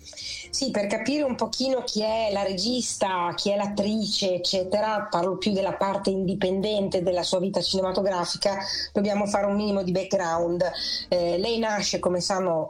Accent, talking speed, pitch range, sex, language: native, 155 wpm, 175-205 Hz, female, Italian